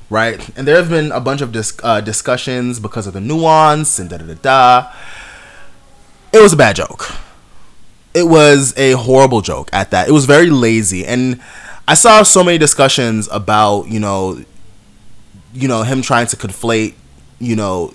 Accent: American